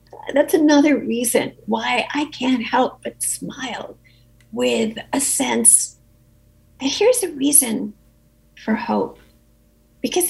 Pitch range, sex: 185-275 Hz, female